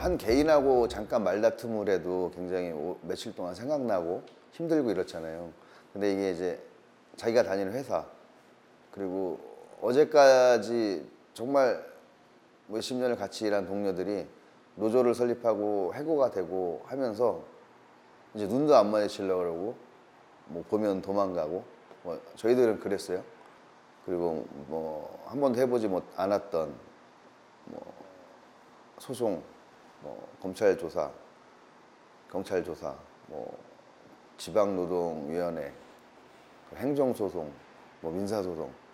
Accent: native